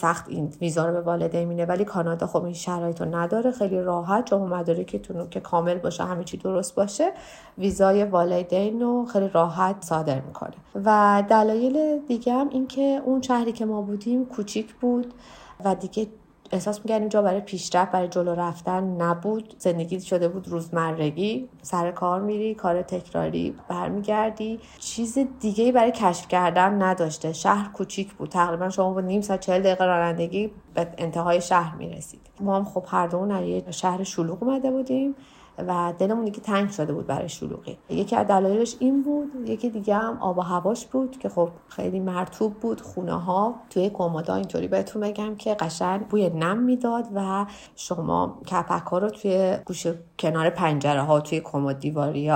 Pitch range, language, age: 170-215 Hz, Persian, 30-49